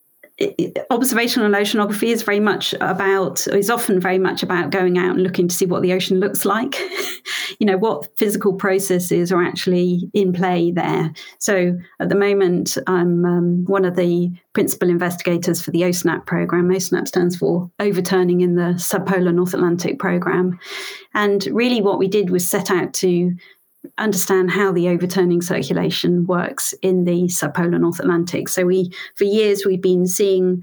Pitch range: 175-200 Hz